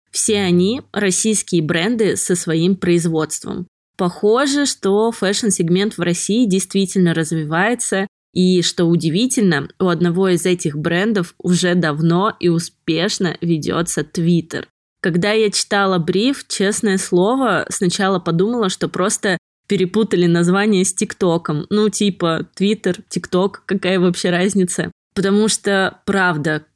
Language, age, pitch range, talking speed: Russian, 20-39, 170-200 Hz, 115 wpm